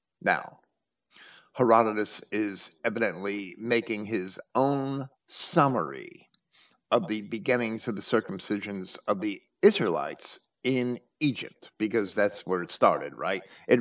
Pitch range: 110-140 Hz